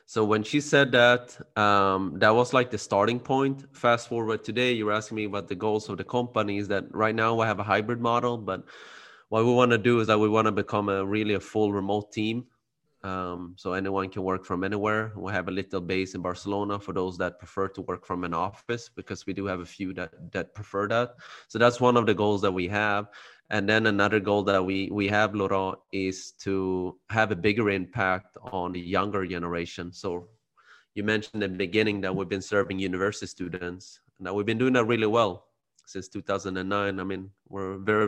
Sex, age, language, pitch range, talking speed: male, 30-49, English, 95-110 Hz, 215 wpm